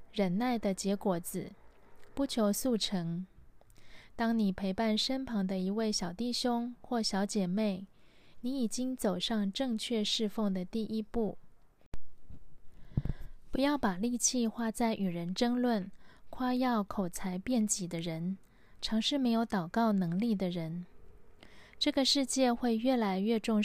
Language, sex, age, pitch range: Chinese, female, 20-39, 185-235 Hz